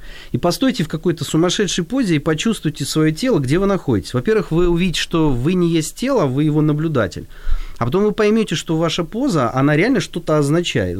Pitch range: 120-180 Hz